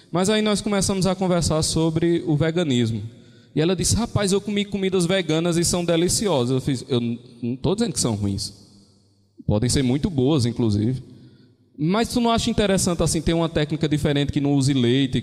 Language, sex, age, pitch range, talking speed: Portuguese, male, 20-39, 120-170 Hz, 190 wpm